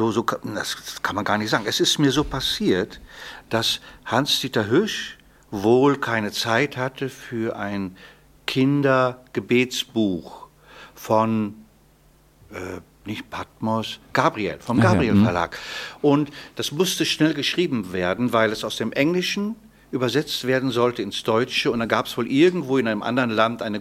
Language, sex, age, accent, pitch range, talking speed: German, male, 50-69, German, 115-145 Hz, 145 wpm